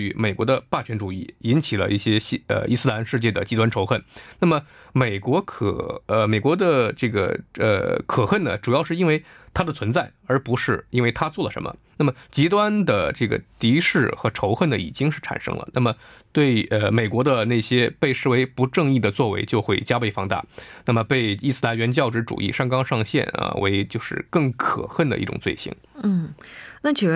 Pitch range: 105-135 Hz